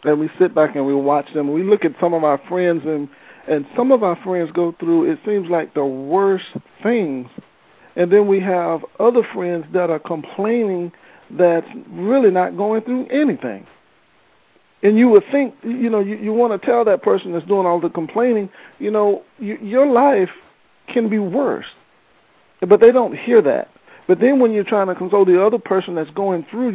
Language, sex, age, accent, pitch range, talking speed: English, male, 50-69, American, 165-215 Hz, 195 wpm